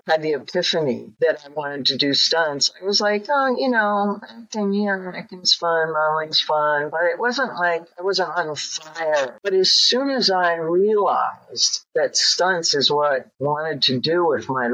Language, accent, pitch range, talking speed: English, American, 150-205 Hz, 175 wpm